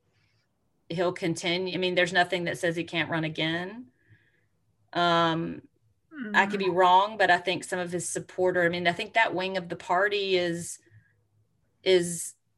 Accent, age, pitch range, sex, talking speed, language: American, 40-59, 125-175 Hz, female, 165 wpm, English